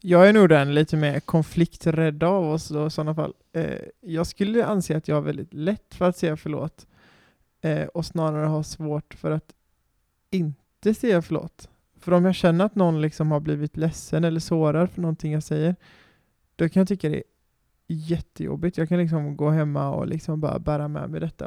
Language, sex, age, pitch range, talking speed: Swedish, male, 20-39, 150-175 Hz, 200 wpm